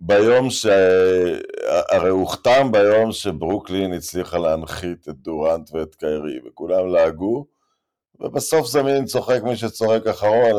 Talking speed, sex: 115 wpm, male